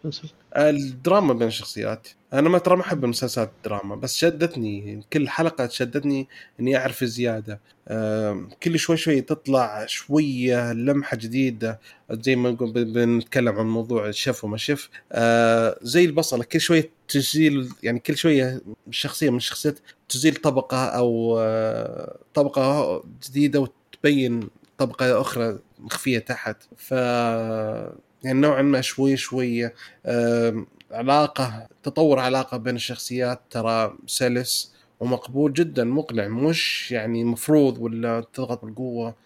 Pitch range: 115-145 Hz